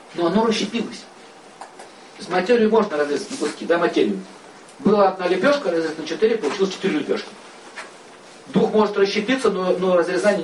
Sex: male